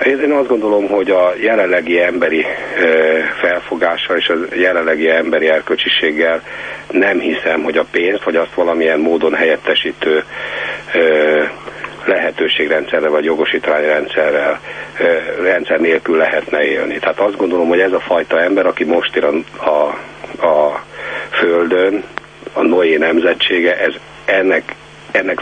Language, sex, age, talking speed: Hungarian, male, 60-79, 125 wpm